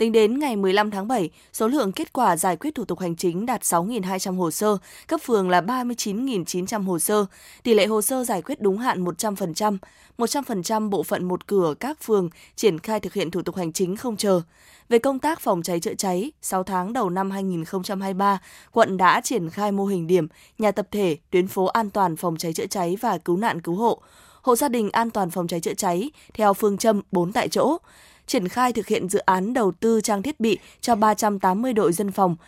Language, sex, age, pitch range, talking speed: Vietnamese, female, 20-39, 185-225 Hz, 220 wpm